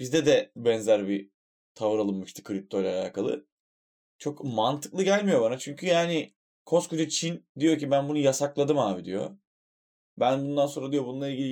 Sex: male